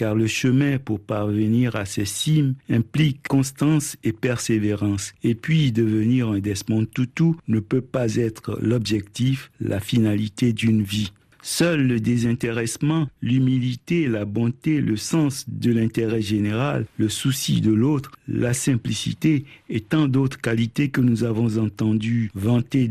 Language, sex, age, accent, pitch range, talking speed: French, male, 50-69, French, 115-140 Hz, 140 wpm